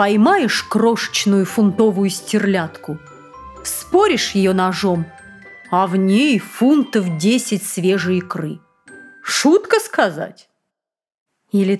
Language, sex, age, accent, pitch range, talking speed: Russian, female, 30-49, native, 195-260 Hz, 85 wpm